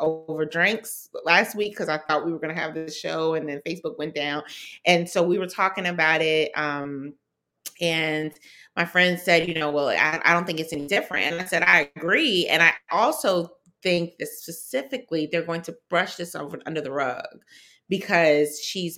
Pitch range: 160-235 Hz